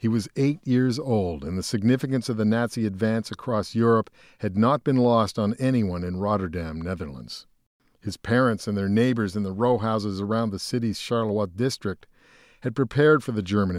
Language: English